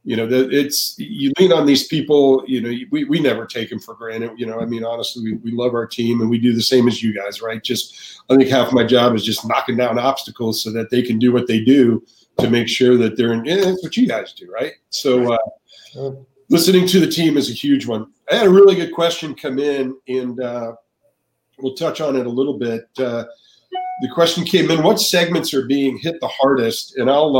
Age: 50-69